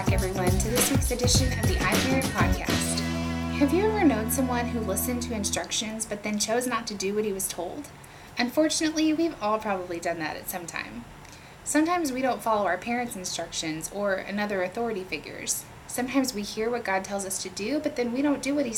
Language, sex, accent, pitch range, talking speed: English, female, American, 190-265 Hz, 210 wpm